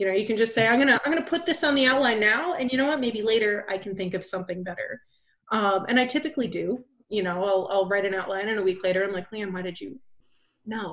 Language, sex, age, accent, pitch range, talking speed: English, female, 30-49, American, 185-235 Hz, 290 wpm